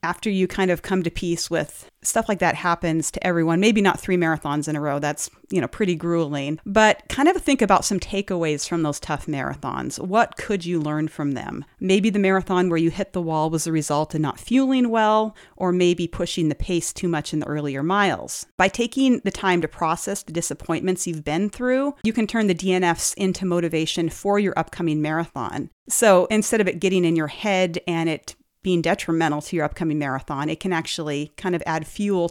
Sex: female